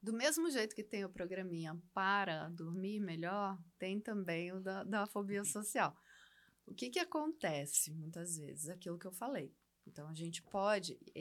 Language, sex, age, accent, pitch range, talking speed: Portuguese, female, 20-39, Brazilian, 170-215 Hz, 165 wpm